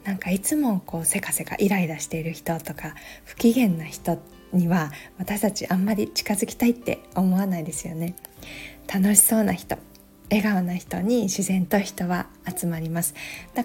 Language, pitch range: Japanese, 170-215 Hz